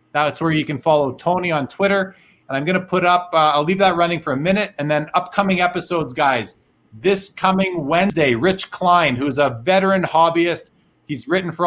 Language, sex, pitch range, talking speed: English, male, 145-175 Hz, 200 wpm